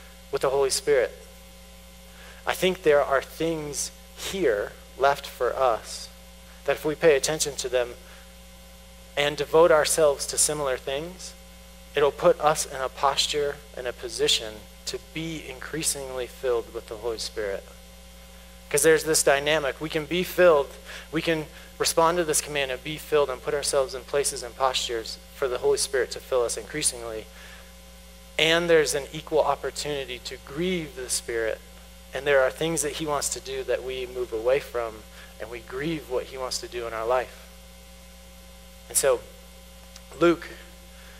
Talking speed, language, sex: 165 wpm, English, male